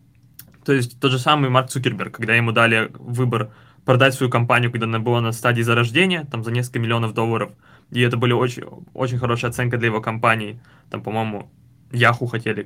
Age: 20-39